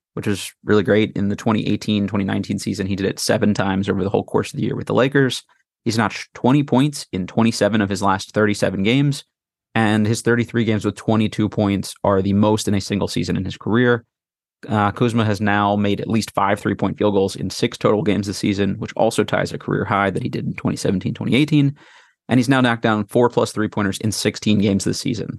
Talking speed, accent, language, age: 215 wpm, American, English, 30-49